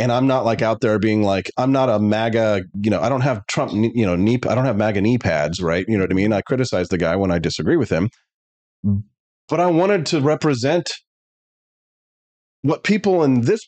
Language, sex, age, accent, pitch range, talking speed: English, male, 30-49, American, 105-145 Hz, 220 wpm